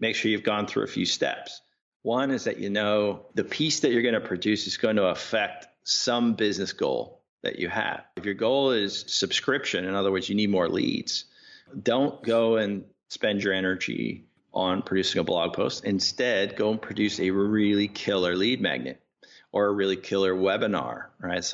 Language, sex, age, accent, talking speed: English, male, 40-59, American, 190 wpm